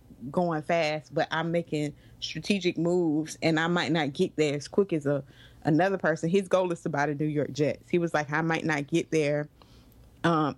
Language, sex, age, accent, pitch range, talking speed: English, female, 20-39, American, 135-170 Hz, 210 wpm